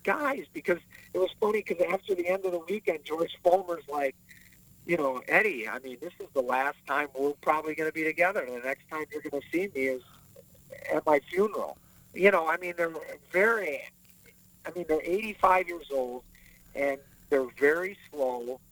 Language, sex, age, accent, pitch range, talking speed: English, male, 50-69, American, 120-180 Hz, 190 wpm